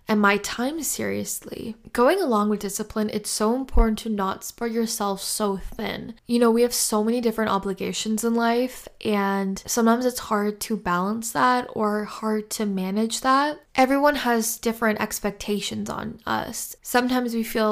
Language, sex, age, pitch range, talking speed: English, female, 10-29, 200-230 Hz, 165 wpm